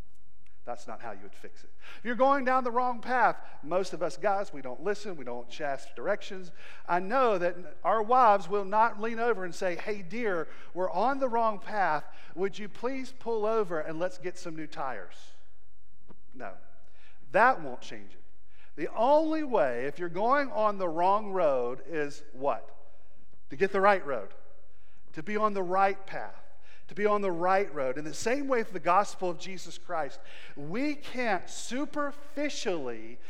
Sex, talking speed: male, 180 wpm